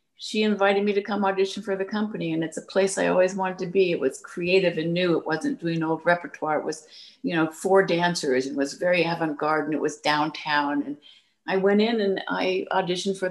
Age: 50-69